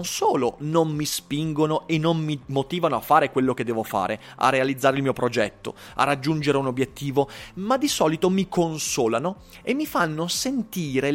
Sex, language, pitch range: male, Italian, 135-220 Hz